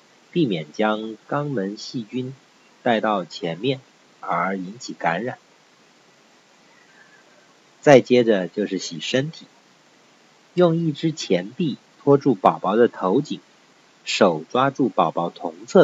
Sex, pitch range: male, 105-150 Hz